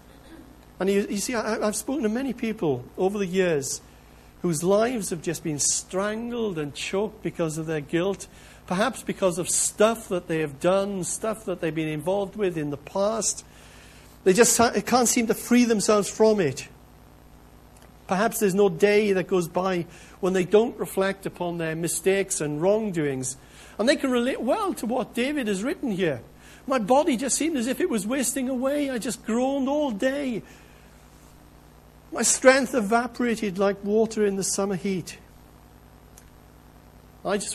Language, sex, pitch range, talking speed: English, male, 150-215 Hz, 165 wpm